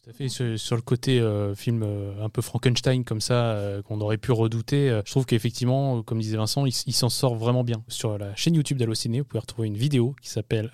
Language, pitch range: French, 110-130 Hz